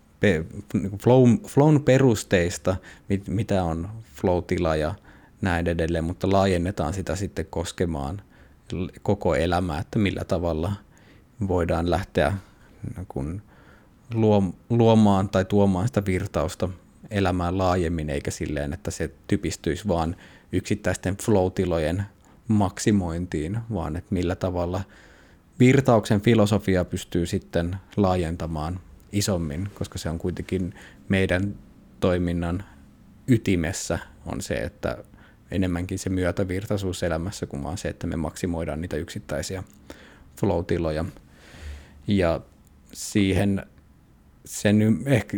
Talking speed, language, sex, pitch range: 95 wpm, Finnish, male, 85-105 Hz